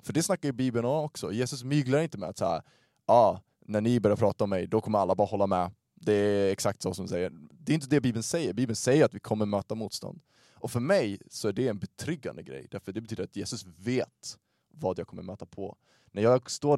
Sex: male